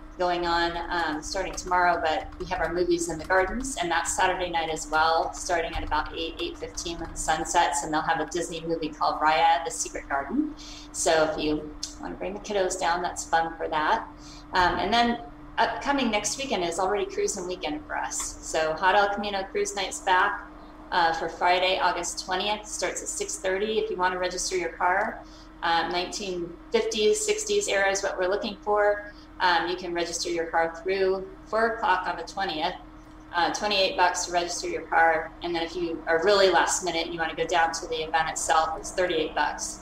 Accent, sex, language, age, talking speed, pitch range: American, female, English, 20-39, 205 wpm, 165-190 Hz